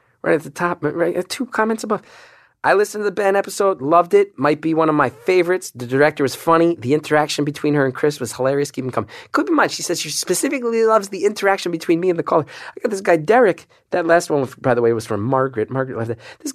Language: English